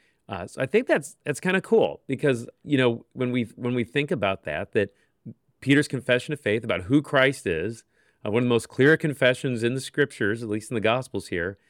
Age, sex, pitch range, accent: 40-59, male, 110-140 Hz, American